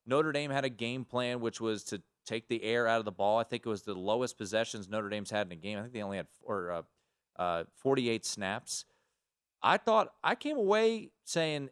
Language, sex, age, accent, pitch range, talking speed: English, male, 30-49, American, 115-155 Hz, 225 wpm